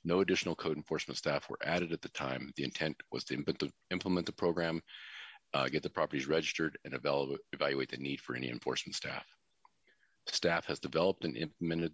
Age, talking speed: 40-59, 180 wpm